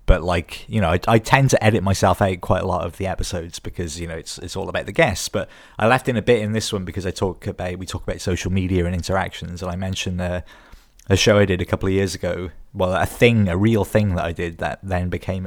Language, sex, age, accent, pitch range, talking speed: English, male, 20-39, British, 90-110 Hz, 275 wpm